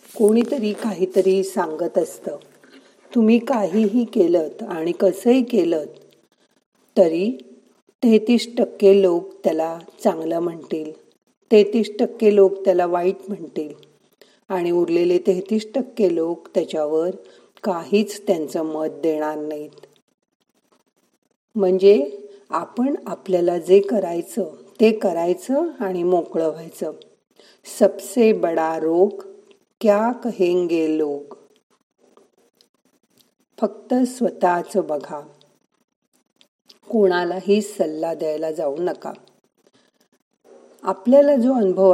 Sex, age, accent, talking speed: female, 40-59, native, 90 wpm